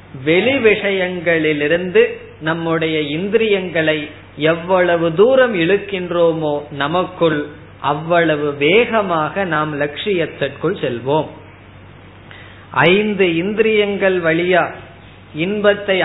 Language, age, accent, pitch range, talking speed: Tamil, 20-39, native, 145-190 Hz, 55 wpm